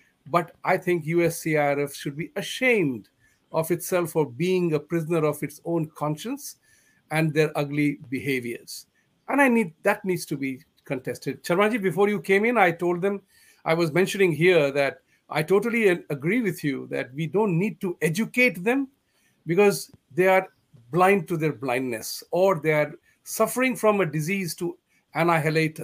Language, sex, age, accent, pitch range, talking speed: English, male, 50-69, Indian, 145-190 Hz, 165 wpm